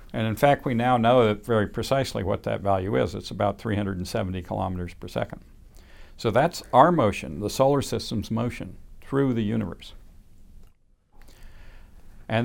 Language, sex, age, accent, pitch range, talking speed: English, male, 60-79, American, 95-115 Hz, 145 wpm